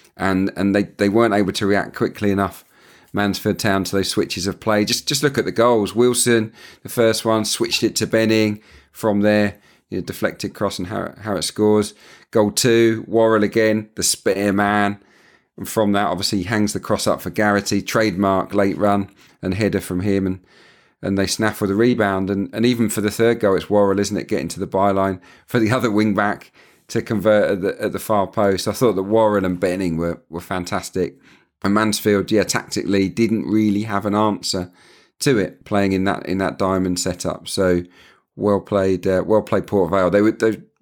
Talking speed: 205 wpm